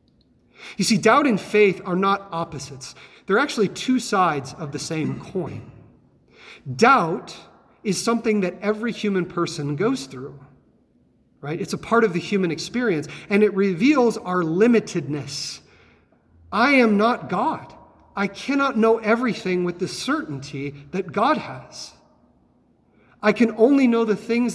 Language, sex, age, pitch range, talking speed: English, male, 40-59, 160-225 Hz, 140 wpm